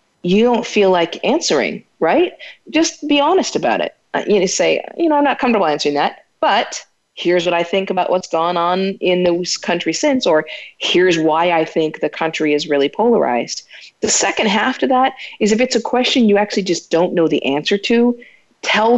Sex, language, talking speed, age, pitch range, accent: female, English, 195 wpm, 40-59, 165-230 Hz, American